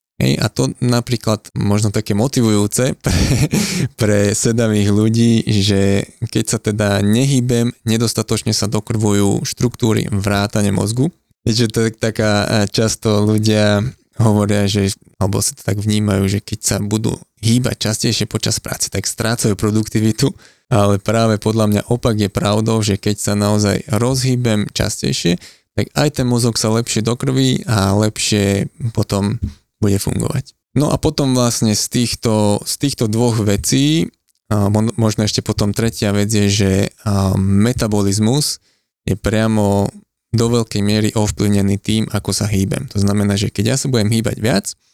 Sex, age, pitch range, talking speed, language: male, 20-39, 105-115 Hz, 140 wpm, Slovak